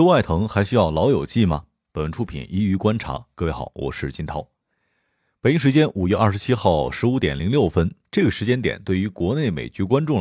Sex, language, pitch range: male, Chinese, 85-115 Hz